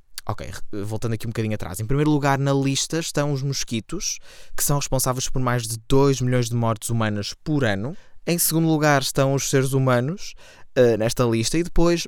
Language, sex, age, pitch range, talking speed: Portuguese, male, 20-39, 110-150 Hz, 190 wpm